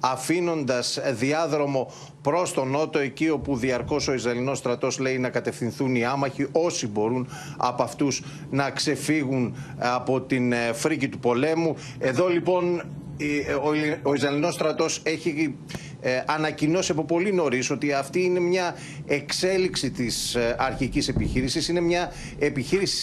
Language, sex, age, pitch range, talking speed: Greek, male, 40-59, 135-165 Hz, 125 wpm